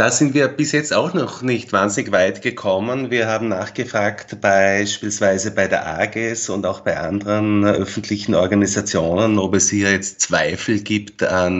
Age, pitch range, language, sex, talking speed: 30-49, 90-105 Hz, German, male, 160 wpm